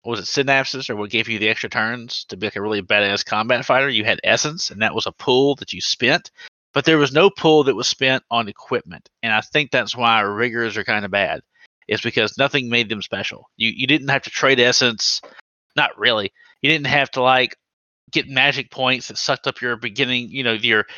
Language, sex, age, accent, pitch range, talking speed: English, male, 30-49, American, 115-155 Hz, 230 wpm